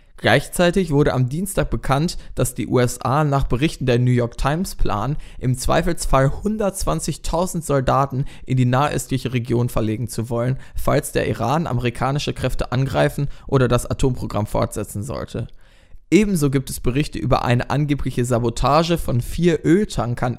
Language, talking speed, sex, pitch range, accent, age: German, 140 wpm, male, 110-140 Hz, German, 20-39